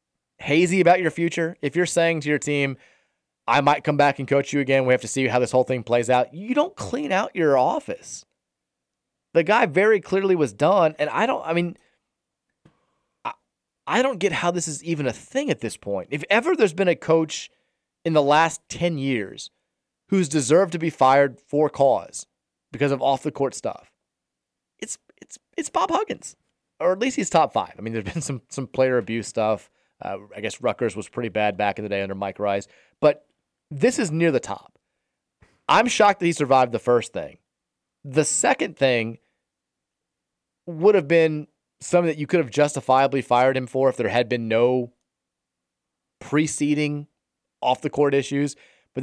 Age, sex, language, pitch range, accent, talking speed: 30-49, male, English, 125-165 Hz, American, 185 wpm